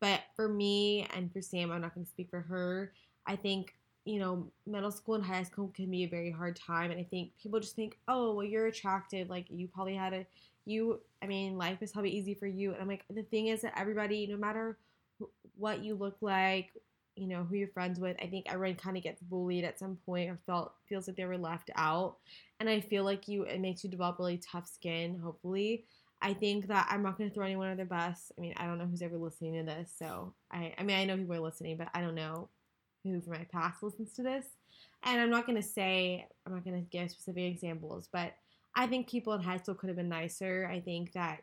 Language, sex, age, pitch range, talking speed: English, female, 20-39, 175-200 Hz, 250 wpm